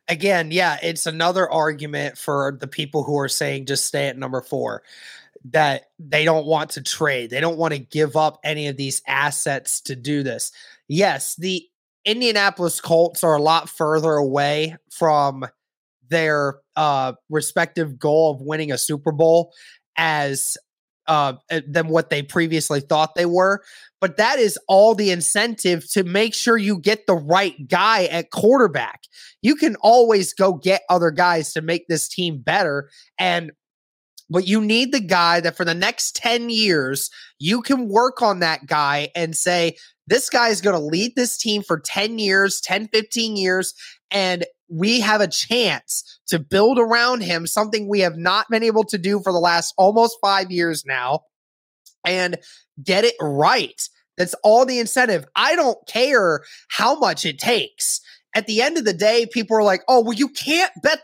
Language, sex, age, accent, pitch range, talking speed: English, male, 20-39, American, 155-220 Hz, 175 wpm